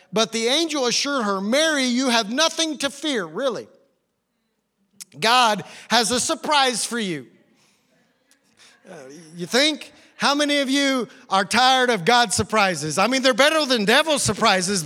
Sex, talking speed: male, 150 wpm